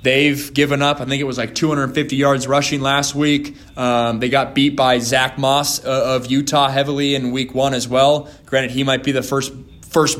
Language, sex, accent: English, male, American